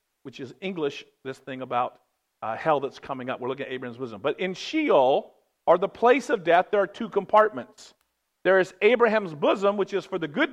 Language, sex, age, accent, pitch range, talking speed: English, male, 50-69, American, 150-210 Hz, 210 wpm